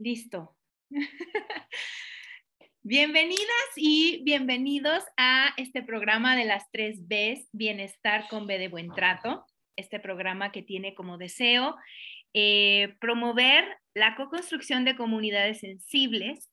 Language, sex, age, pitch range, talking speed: Spanish, female, 30-49, 210-275 Hz, 115 wpm